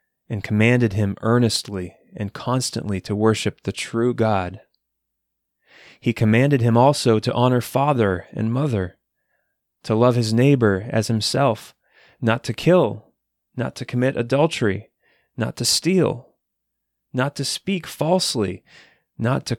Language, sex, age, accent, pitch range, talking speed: English, male, 30-49, American, 100-125 Hz, 130 wpm